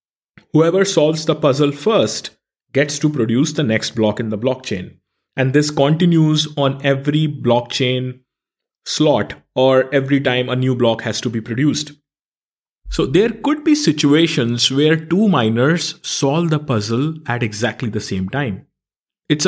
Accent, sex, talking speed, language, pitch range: Indian, male, 150 wpm, English, 120-150 Hz